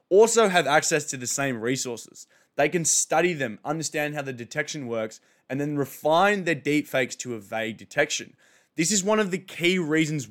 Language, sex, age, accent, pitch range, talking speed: English, male, 20-39, Australian, 125-165 Hz, 180 wpm